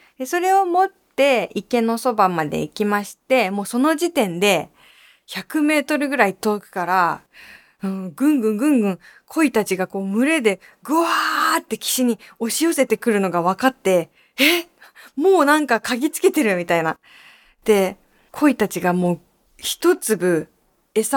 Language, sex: Japanese, female